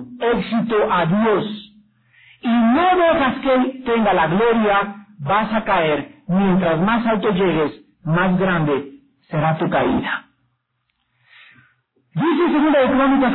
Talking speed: 115 wpm